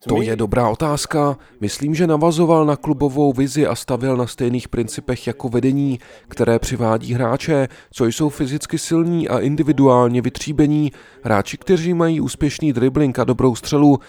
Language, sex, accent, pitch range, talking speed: Czech, male, native, 120-150 Hz, 150 wpm